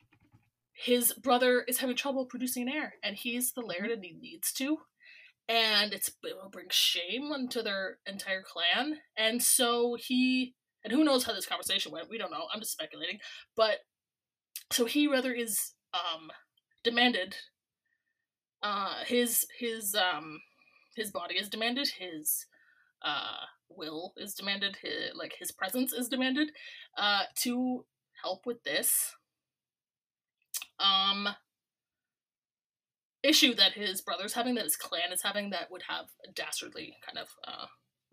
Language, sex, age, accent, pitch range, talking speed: English, female, 20-39, American, 200-280 Hz, 145 wpm